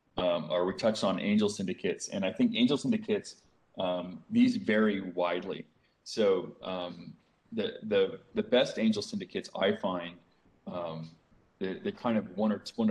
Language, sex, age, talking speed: English, male, 30-49, 160 wpm